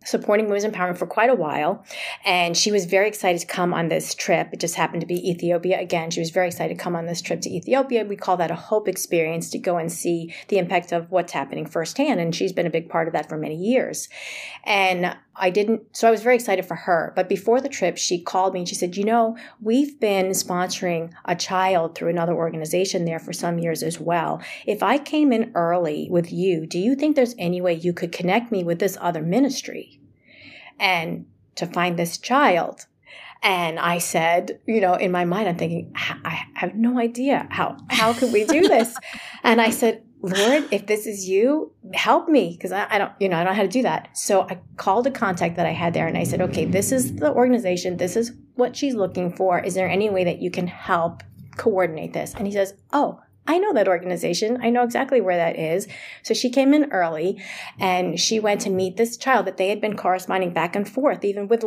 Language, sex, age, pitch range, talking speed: English, female, 30-49, 175-225 Hz, 230 wpm